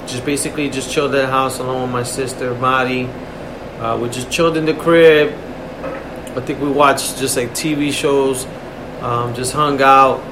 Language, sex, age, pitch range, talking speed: English, male, 30-49, 130-160 Hz, 180 wpm